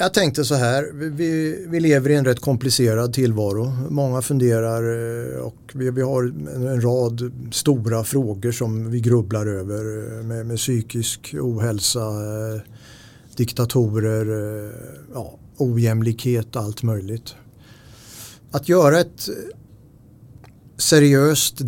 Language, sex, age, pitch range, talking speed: English, male, 50-69, 115-135 Hz, 110 wpm